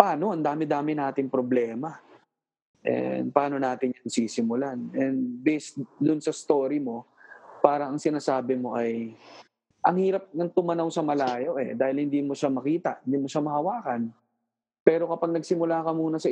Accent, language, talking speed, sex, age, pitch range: native, Filipino, 160 wpm, male, 20-39, 130-170 Hz